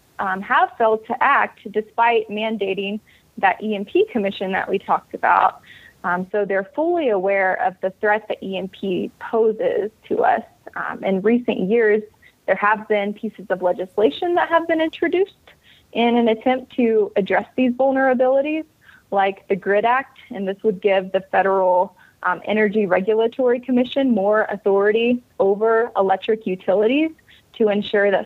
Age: 20-39